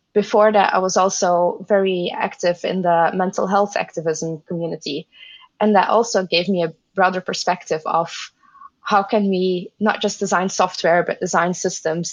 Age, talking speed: 20-39, 160 wpm